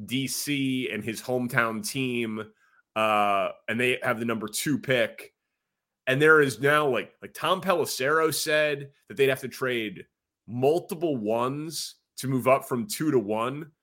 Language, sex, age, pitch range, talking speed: English, male, 30-49, 115-140 Hz, 155 wpm